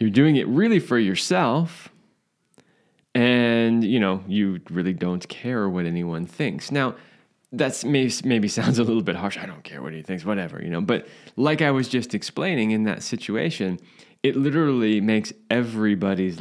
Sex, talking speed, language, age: male, 170 wpm, English, 20-39